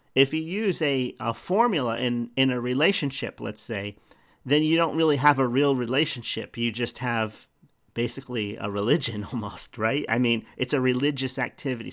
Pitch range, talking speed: 115-150 Hz, 170 wpm